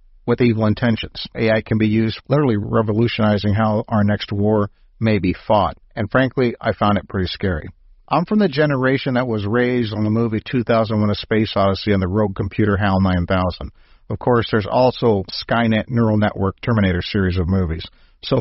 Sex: male